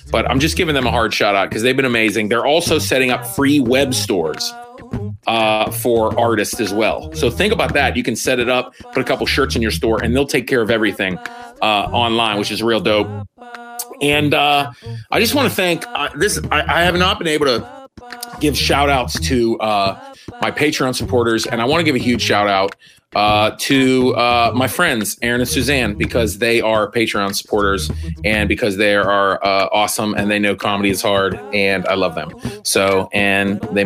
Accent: American